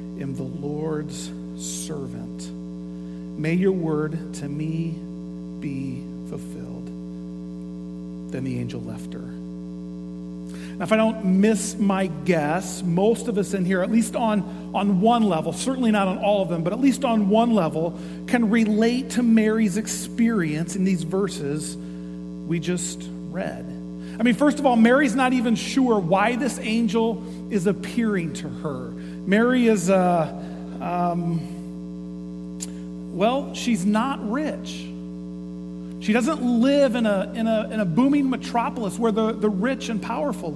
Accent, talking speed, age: American, 145 wpm, 40-59